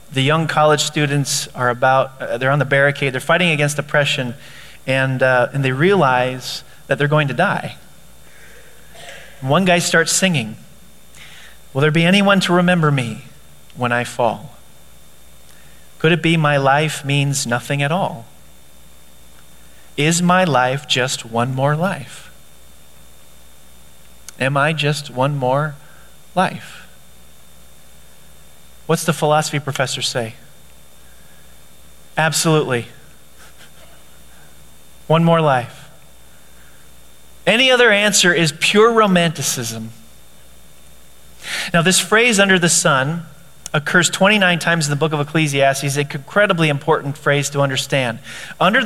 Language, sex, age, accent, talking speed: English, male, 30-49, American, 120 wpm